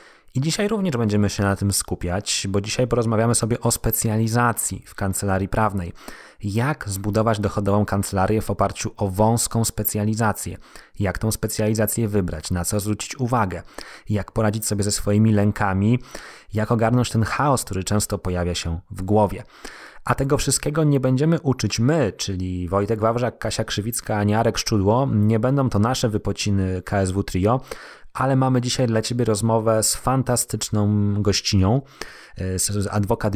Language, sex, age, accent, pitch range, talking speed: Polish, male, 20-39, native, 100-115 Hz, 150 wpm